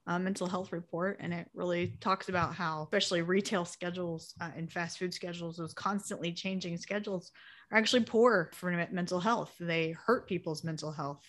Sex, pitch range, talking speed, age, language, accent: female, 165-195 Hz, 180 wpm, 30-49, English, American